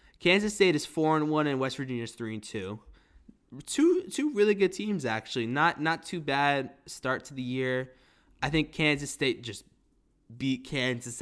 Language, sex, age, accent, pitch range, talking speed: English, male, 20-39, American, 120-155 Hz, 180 wpm